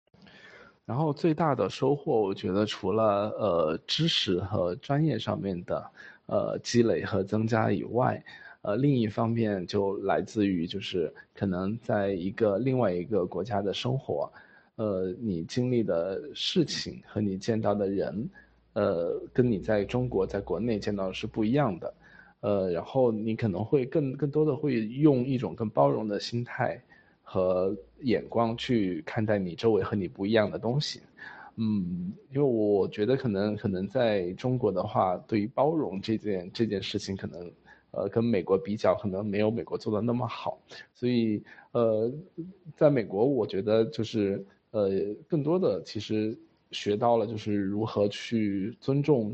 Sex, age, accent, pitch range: male, 20-39, native, 100-125 Hz